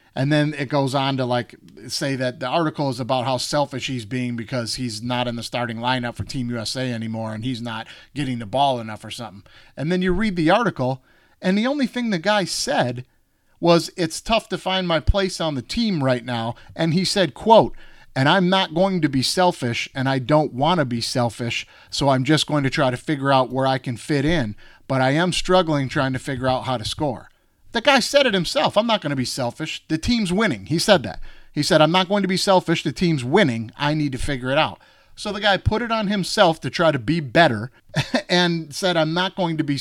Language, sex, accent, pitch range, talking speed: English, male, American, 125-175 Hz, 240 wpm